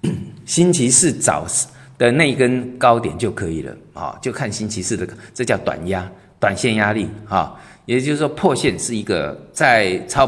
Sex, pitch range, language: male, 100-140 Hz, Chinese